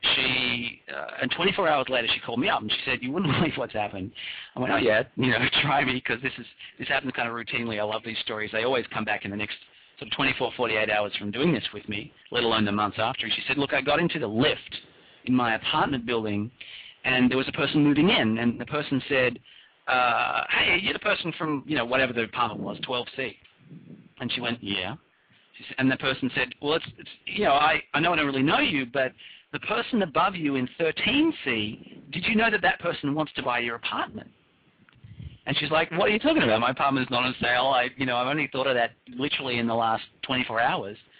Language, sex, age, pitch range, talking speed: English, male, 40-59, 115-155 Hz, 240 wpm